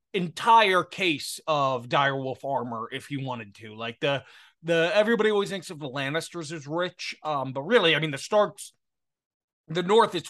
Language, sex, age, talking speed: English, male, 20-39, 175 wpm